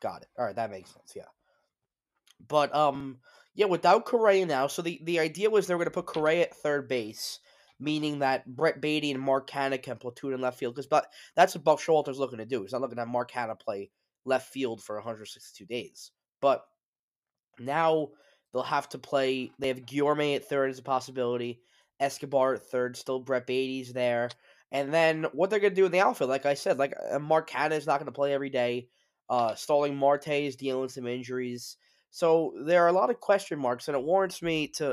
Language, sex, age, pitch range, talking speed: English, male, 20-39, 125-155 Hz, 210 wpm